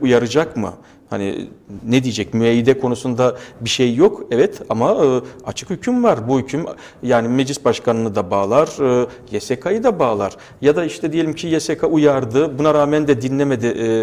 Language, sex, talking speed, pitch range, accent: English, male, 155 wpm, 120-145 Hz, Turkish